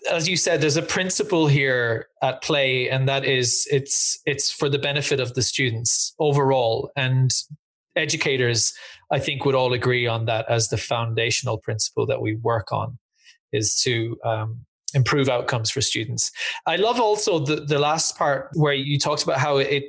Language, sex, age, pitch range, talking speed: English, male, 20-39, 125-150 Hz, 175 wpm